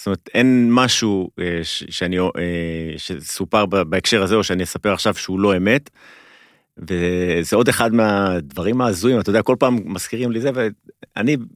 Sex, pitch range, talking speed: male, 90-125 Hz, 145 wpm